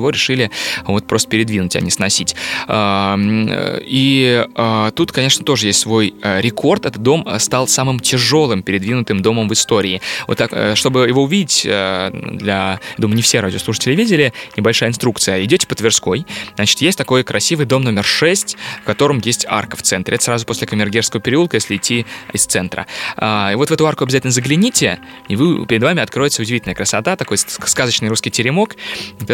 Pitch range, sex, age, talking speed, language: 105-135 Hz, male, 20-39, 165 wpm, Russian